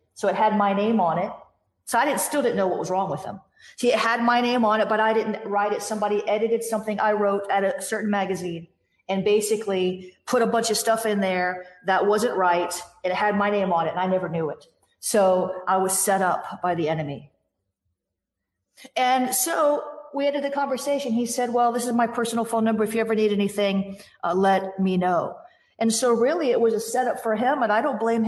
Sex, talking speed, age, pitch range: female, 225 wpm, 40-59, 200-240 Hz